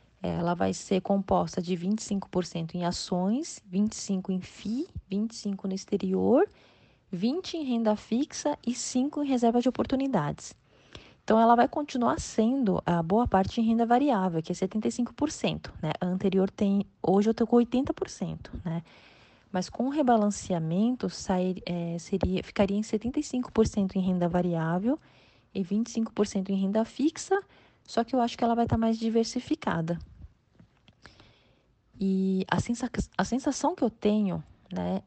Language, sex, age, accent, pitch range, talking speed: Portuguese, female, 20-39, Brazilian, 175-230 Hz, 145 wpm